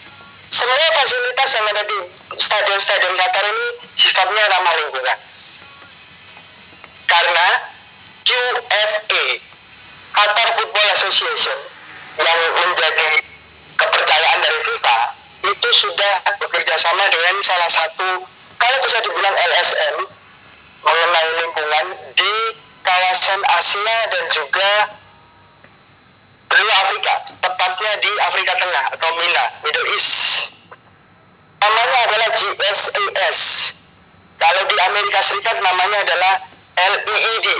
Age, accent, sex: 50-69, native, male